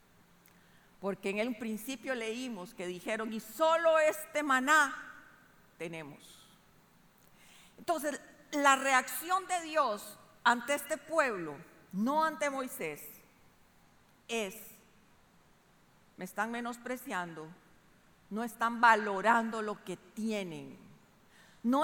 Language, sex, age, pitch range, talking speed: Spanish, female, 50-69, 215-295 Hz, 95 wpm